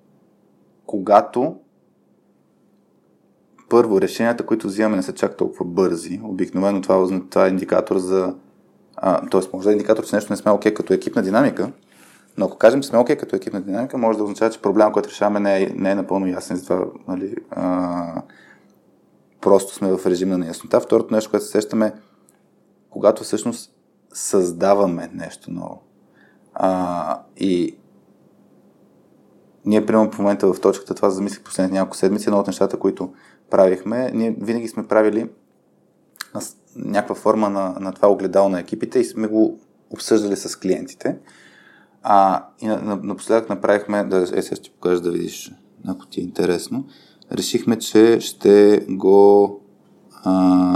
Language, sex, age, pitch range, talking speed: Bulgarian, male, 20-39, 95-105 Hz, 145 wpm